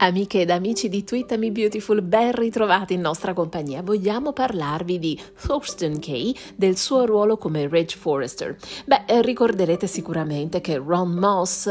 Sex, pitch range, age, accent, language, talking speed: female, 170-220 Hz, 30-49, native, Italian, 145 wpm